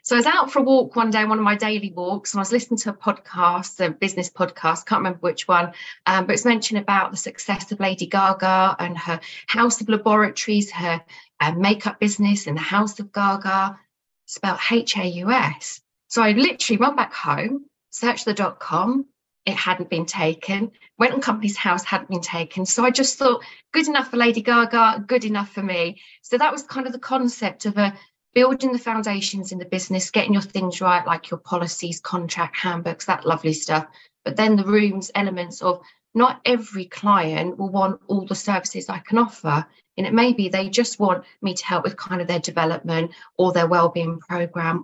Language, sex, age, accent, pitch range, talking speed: English, female, 40-59, British, 180-230 Hz, 205 wpm